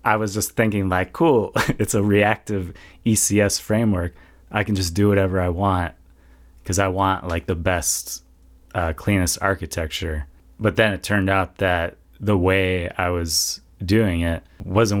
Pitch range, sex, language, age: 80-100 Hz, male, English, 20-39